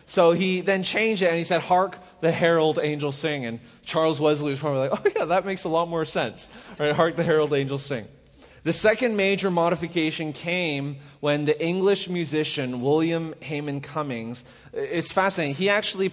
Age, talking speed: 20-39, 180 wpm